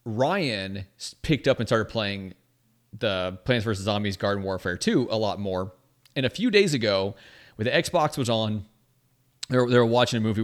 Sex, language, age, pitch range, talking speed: male, English, 30-49, 105-135 Hz, 190 wpm